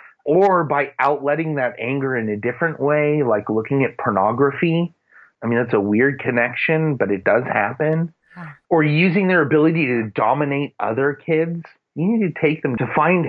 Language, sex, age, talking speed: English, male, 30-49, 170 wpm